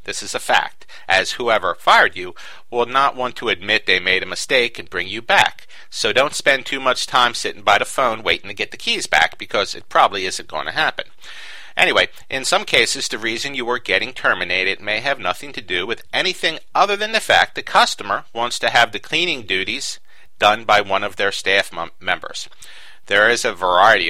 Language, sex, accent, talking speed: English, male, American, 210 wpm